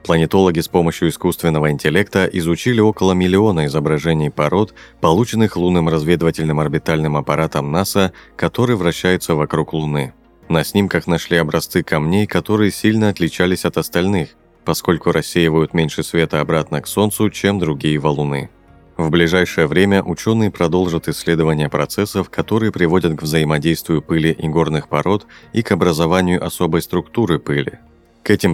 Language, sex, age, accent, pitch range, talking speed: Russian, male, 30-49, native, 80-95 Hz, 130 wpm